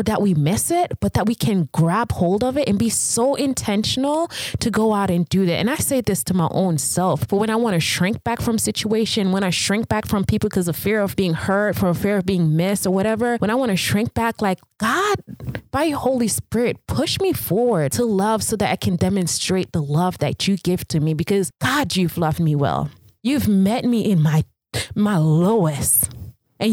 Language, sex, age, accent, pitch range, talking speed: English, female, 20-39, American, 165-225 Hz, 225 wpm